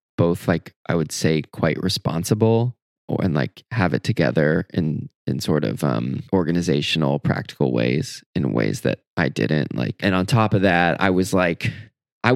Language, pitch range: English, 85-105 Hz